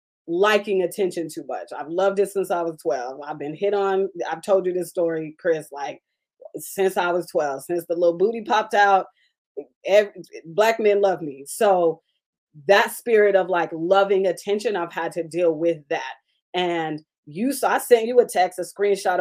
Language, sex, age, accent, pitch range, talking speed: English, female, 20-39, American, 170-210 Hz, 185 wpm